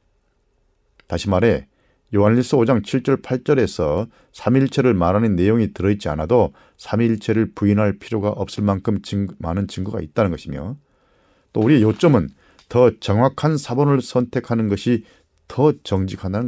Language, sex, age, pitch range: Korean, male, 40-59, 90-120 Hz